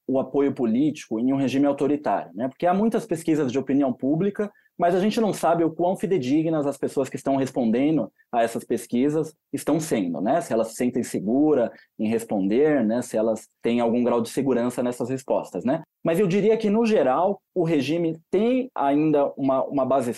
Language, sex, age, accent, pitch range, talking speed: Portuguese, male, 20-39, Brazilian, 120-170 Hz, 195 wpm